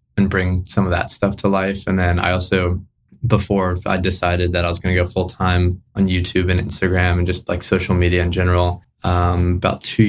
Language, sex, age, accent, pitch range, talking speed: English, male, 20-39, American, 90-100 Hz, 215 wpm